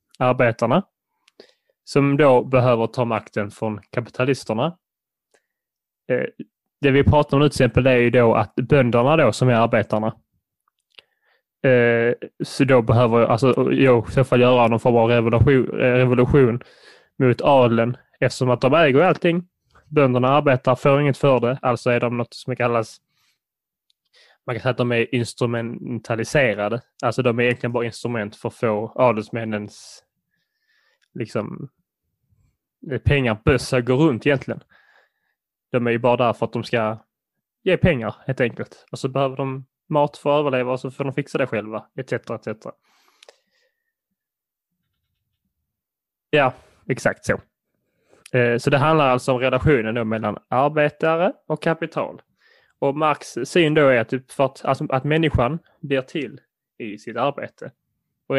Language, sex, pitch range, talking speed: Swedish, male, 120-140 Hz, 140 wpm